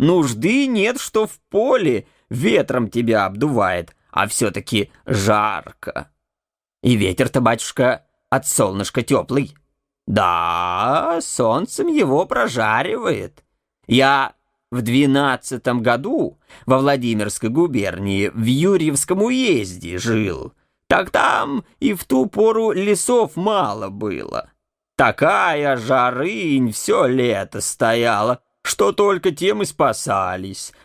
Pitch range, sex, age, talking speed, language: 110-155 Hz, male, 20-39, 100 wpm, English